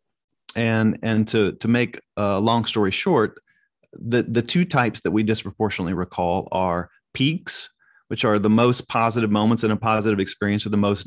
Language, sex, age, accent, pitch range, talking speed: English, male, 30-49, American, 110-135 Hz, 175 wpm